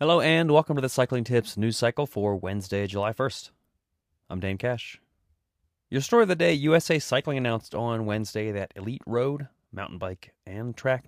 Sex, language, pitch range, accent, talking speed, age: male, English, 95-120 Hz, American, 180 wpm, 30-49